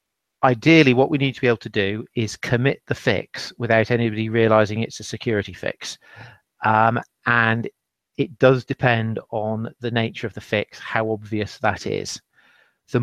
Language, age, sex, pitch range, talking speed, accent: English, 40-59, male, 110-125 Hz, 165 wpm, British